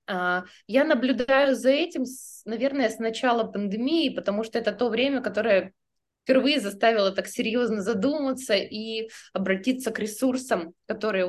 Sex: female